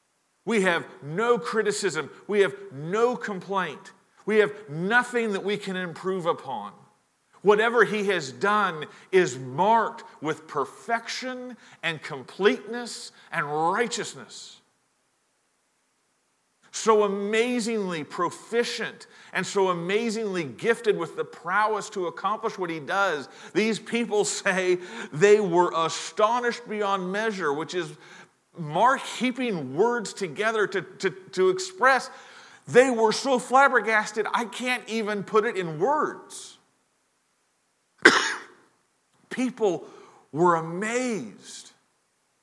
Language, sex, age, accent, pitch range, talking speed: English, male, 40-59, American, 185-230 Hz, 105 wpm